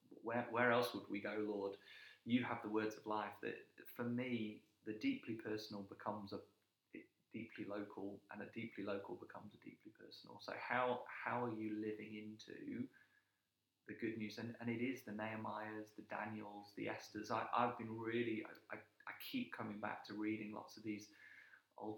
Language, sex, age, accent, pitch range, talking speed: English, male, 30-49, British, 105-115 Hz, 185 wpm